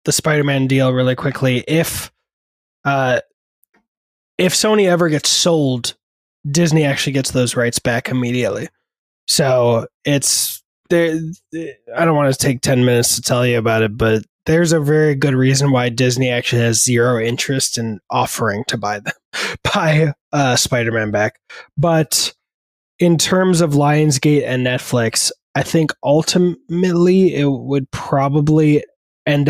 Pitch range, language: 120-160 Hz, English